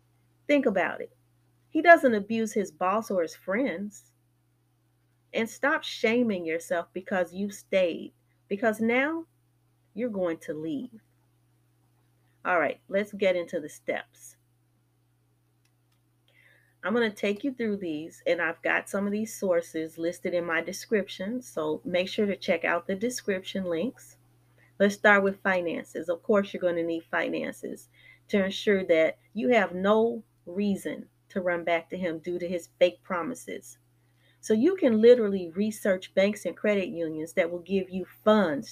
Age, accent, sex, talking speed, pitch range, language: 30-49, American, female, 155 wpm, 160-210 Hz, English